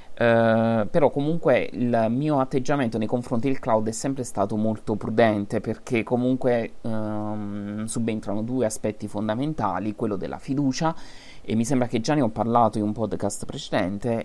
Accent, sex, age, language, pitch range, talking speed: native, male, 30-49, Italian, 105-130 Hz, 155 wpm